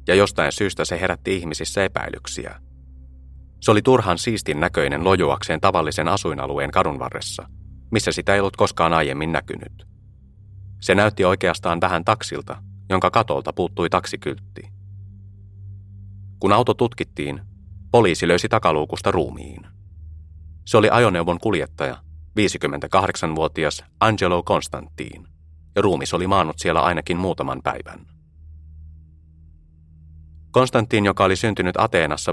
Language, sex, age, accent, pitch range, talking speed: Finnish, male, 30-49, native, 75-100 Hz, 110 wpm